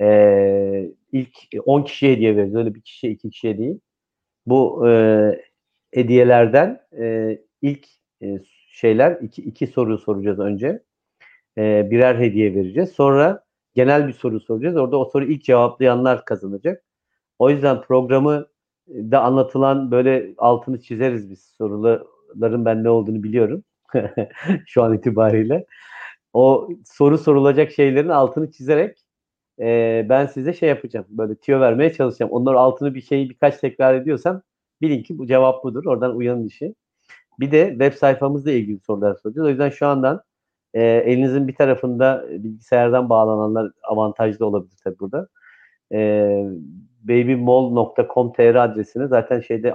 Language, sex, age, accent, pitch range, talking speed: Turkish, male, 50-69, native, 110-135 Hz, 130 wpm